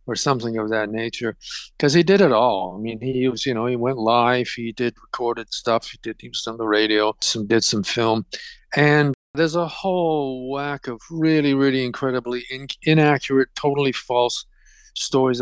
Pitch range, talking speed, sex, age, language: 115-135 Hz, 175 wpm, male, 50-69, English